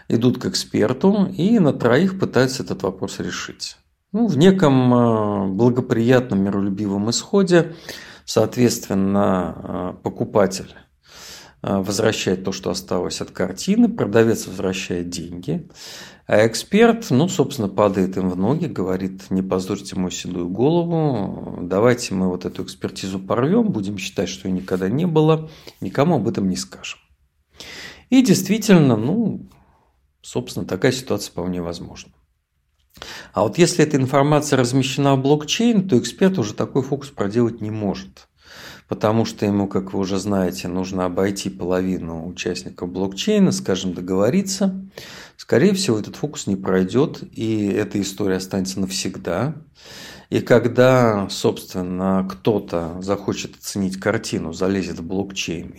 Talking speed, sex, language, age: 125 wpm, male, Russian, 50-69